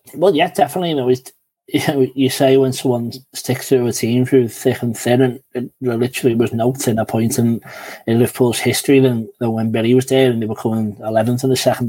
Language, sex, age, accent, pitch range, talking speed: English, male, 20-39, British, 115-125 Hz, 235 wpm